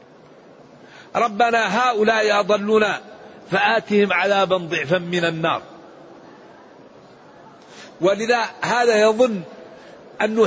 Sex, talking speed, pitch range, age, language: male, 70 wpm, 205-235 Hz, 50-69, Arabic